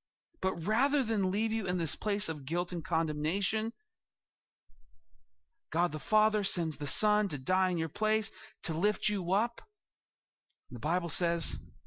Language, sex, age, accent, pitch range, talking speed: English, male, 40-59, American, 140-190 Hz, 150 wpm